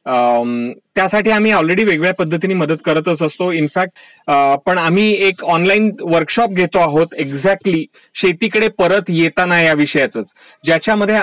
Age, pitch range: 30-49, 160-205 Hz